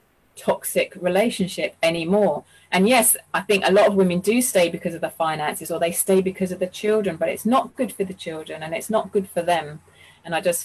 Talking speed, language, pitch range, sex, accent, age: 225 wpm, English, 175-215 Hz, female, British, 30-49